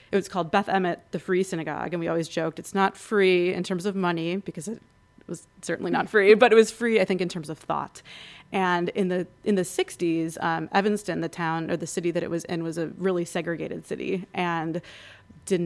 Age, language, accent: 30-49, English, American